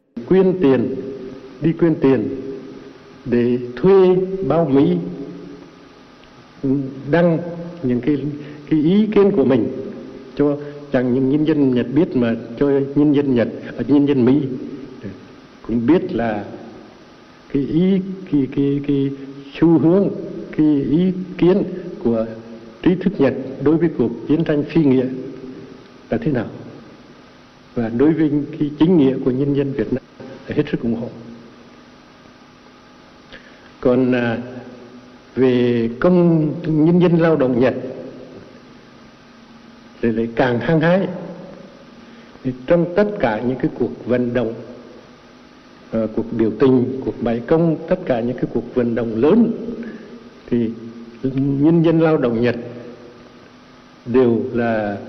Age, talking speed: 60-79, 130 wpm